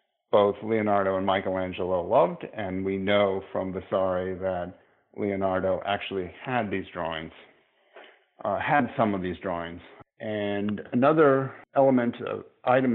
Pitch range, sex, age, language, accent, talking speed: 95-120 Hz, male, 50-69, English, American, 120 wpm